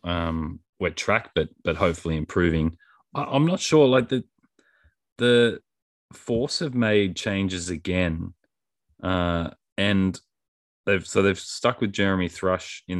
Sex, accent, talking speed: male, Australian, 135 wpm